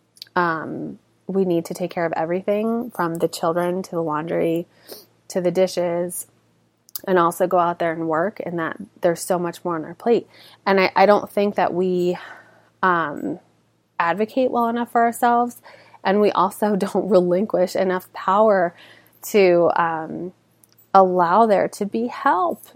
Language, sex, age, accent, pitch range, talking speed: English, female, 20-39, American, 175-215 Hz, 160 wpm